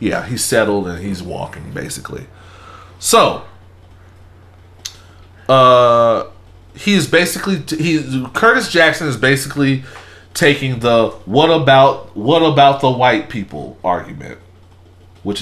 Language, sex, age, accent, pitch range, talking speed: English, male, 40-59, American, 90-130 Hz, 105 wpm